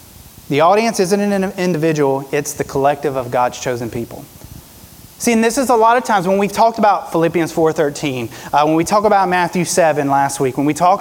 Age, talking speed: 30-49, 200 wpm